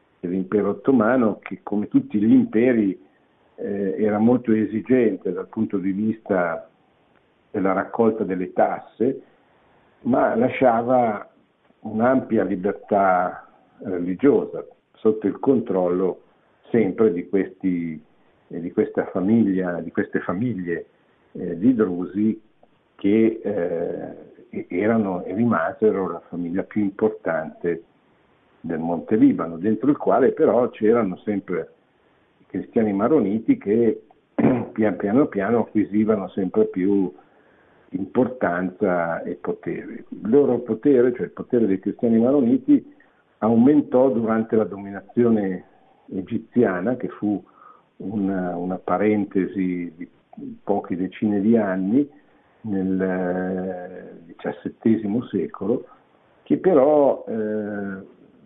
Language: Italian